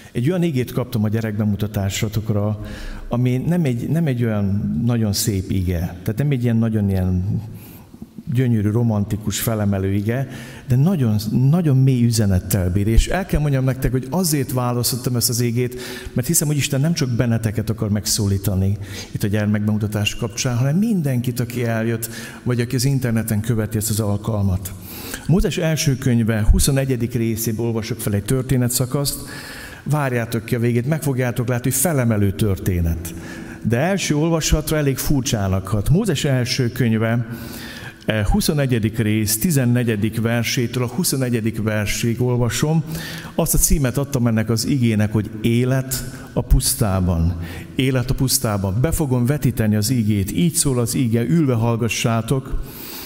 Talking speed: 140 wpm